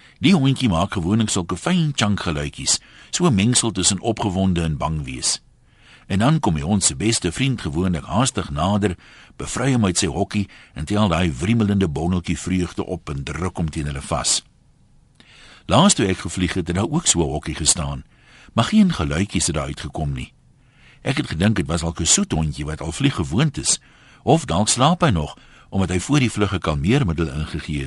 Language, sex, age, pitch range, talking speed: Dutch, male, 60-79, 80-120 Hz, 185 wpm